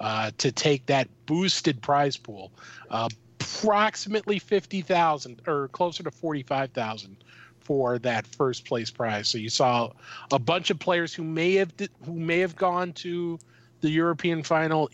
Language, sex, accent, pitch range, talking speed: English, male, American, 120-160 Hz, 150 wpm